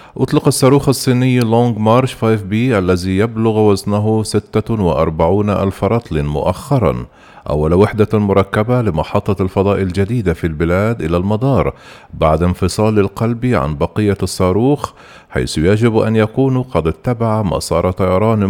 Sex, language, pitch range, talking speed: male, Arabic, 90-115 Hz, 120 wpm